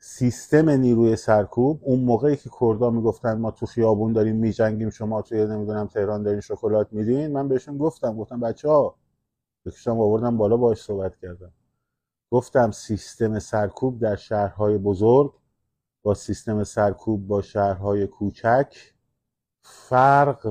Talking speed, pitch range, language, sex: 135 wpm, 100-120 Hz, Persian, male